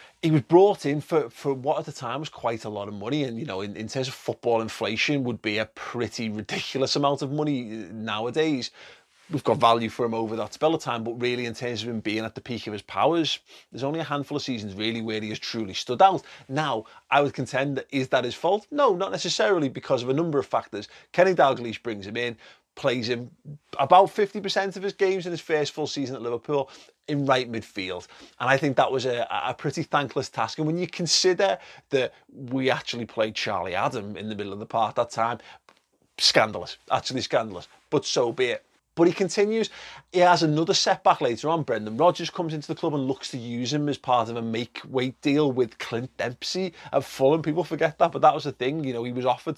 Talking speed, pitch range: 230 wpm, 115-155 Hz